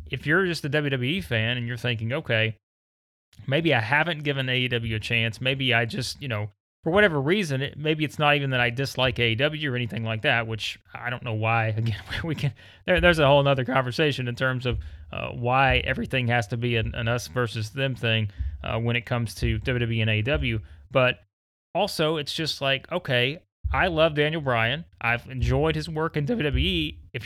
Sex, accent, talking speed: male, American, 205 wpm